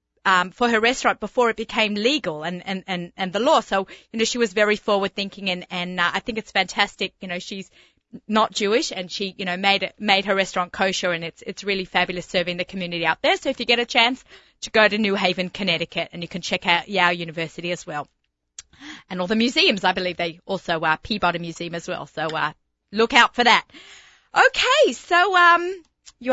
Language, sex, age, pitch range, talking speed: English, female, 30-49, 185-235 Hz, 225 wpm